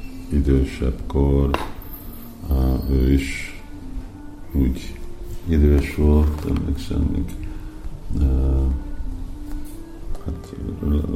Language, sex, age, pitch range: Hungarian, male, 50-69, 70-90 Hz